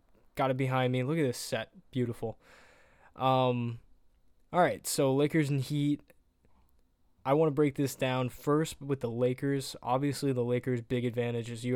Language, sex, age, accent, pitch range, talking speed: English, male, 10-29, American, 115-130 Hz, 170 wpm